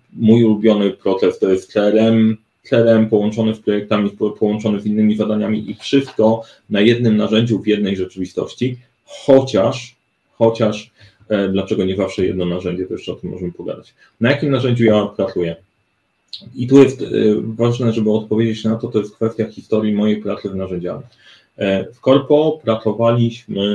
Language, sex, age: Polish, male, 30-49